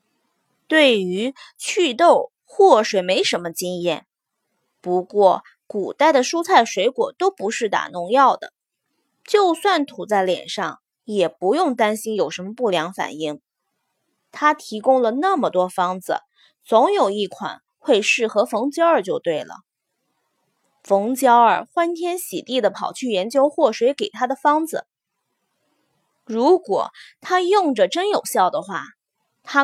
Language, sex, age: Chinese, female, 20-39